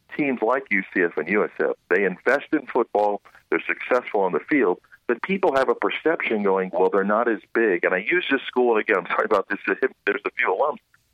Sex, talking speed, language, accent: male, 215 wpm, English, American